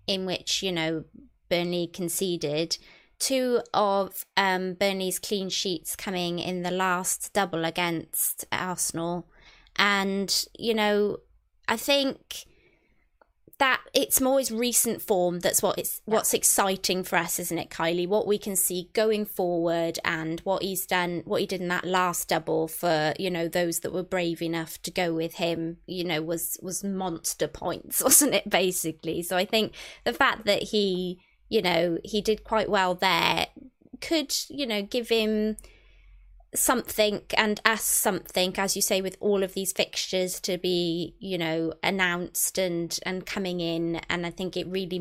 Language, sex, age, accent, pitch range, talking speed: English, female, 20-39, British, 170-210 Hz, 165 wpm